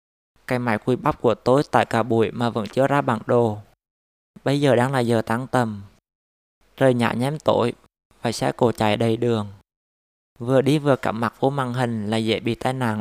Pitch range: 105-130 Hz